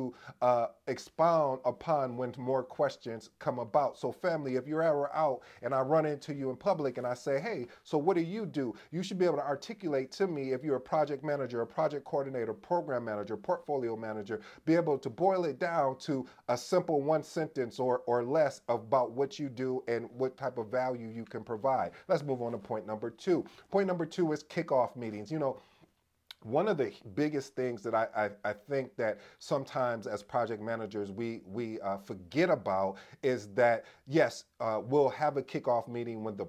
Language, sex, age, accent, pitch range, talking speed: English, male, 40-59, American, 115-150 Hz, 200 wpm